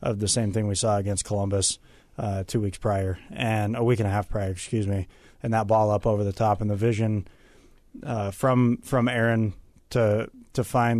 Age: 20-39